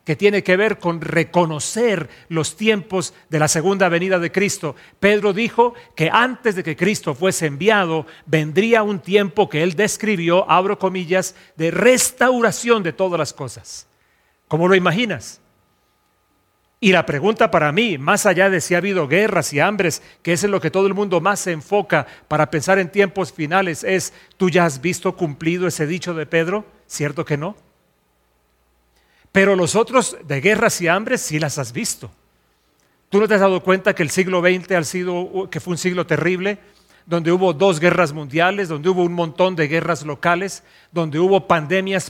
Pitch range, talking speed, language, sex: 160-195 Hz, 180 wpm, English, male